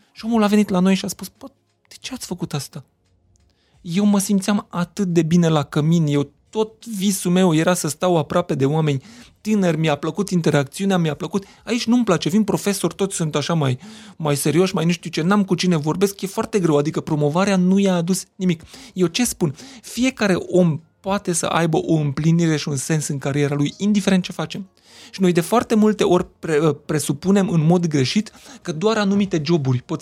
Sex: male